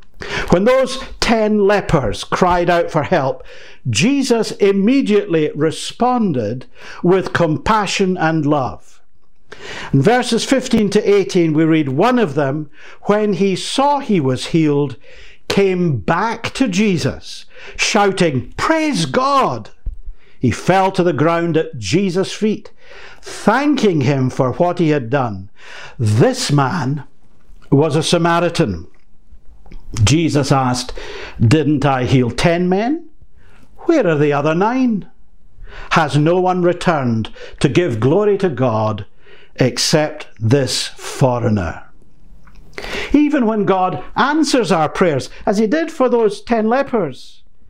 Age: 60-79